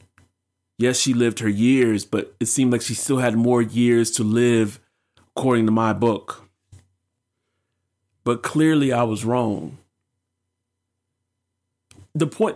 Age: 30-49